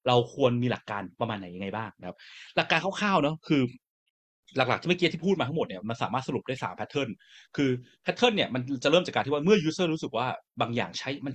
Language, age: Thai, 20-39